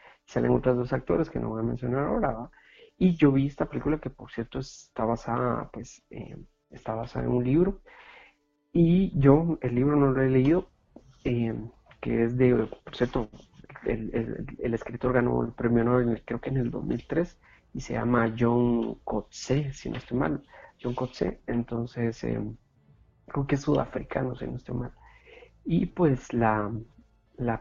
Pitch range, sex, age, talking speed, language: 115-140 Hz, male, 40-59, 175 wpm, Spanish